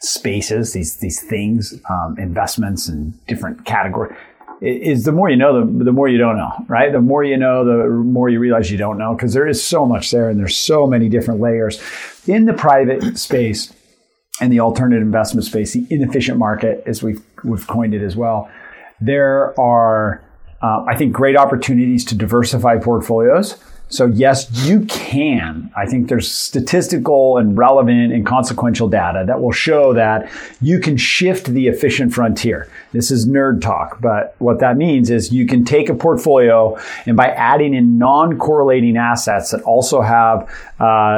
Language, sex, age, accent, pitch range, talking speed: English, male, 40-59, American, 115-135 Hz, 180 wpm